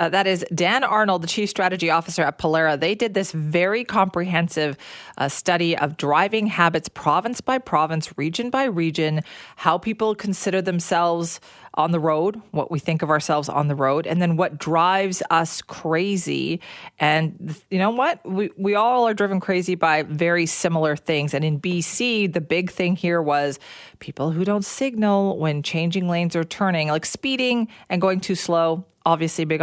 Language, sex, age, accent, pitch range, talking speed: English, female, 40-59, American, 160-205 Hz, 175 wpm